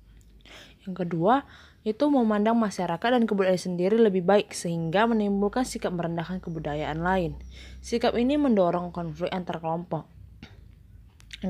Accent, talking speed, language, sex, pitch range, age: native, 120 wpm, Indonesian, female, 155-200 Hz, 20-39